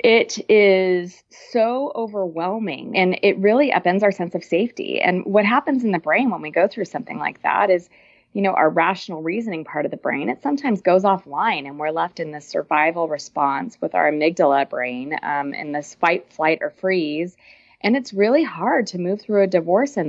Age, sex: 30-49, female